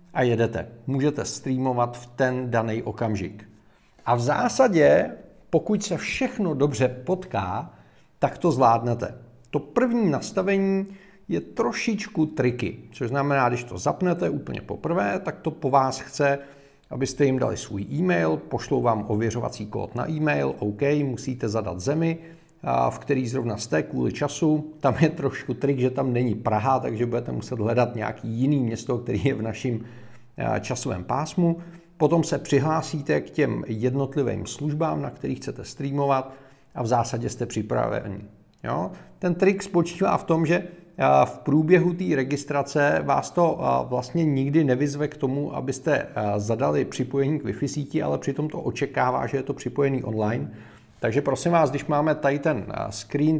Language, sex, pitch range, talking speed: Czech, male, 120-155 Hz, 150 wpm